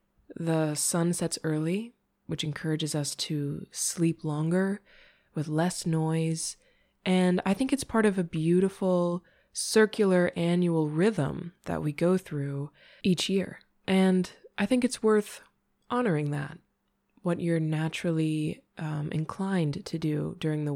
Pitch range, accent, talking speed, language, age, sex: 155-195 Hz, American, 135 wpm, English, 20-39, female